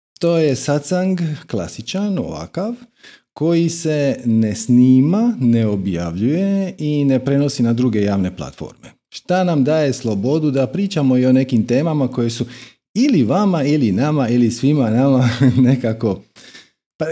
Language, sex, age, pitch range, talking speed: Croatian, male, 40-59, 105-145 Hz, 135 wpm